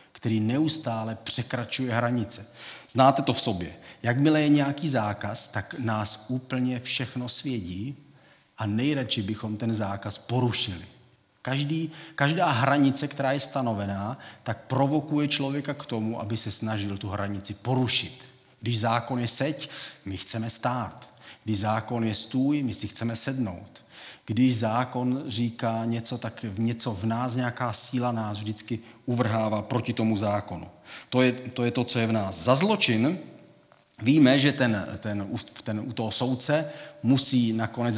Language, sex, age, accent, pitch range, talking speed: Czech, male, 40-59, native, 110-135 Hz, 145 wpm